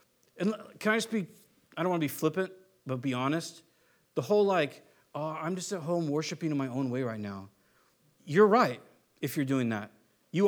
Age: 40-59